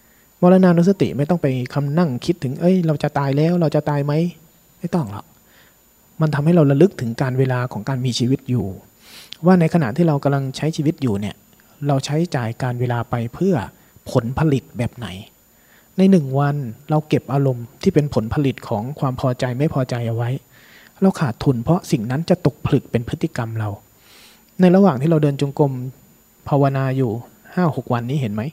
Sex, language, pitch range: male, Thai, 125-170 Hz